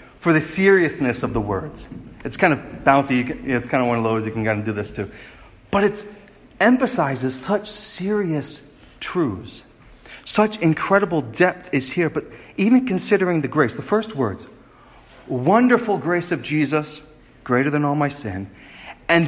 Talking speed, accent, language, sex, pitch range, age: 160 wpm, American, English, male, 125-195 Hz, 40-59